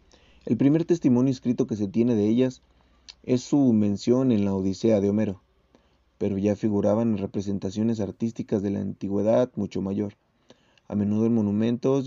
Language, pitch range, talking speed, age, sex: Spanish, 105-125 Hz, 160 wpm, 30-49, male